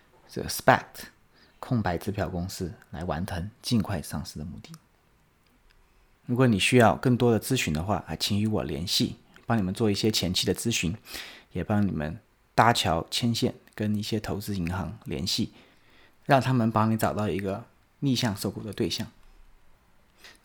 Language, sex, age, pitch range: Chinese, male, 30-49, 100-125 Hz